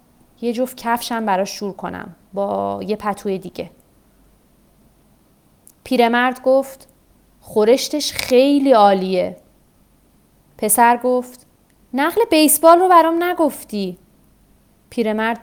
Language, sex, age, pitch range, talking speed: Persian, female, 30-49, 210-270 Hz, 90 wpm